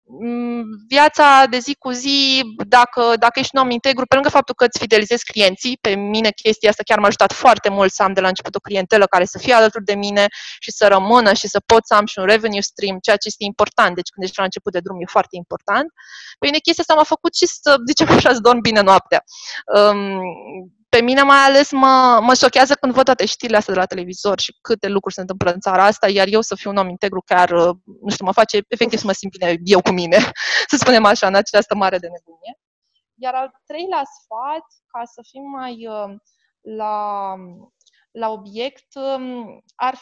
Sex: female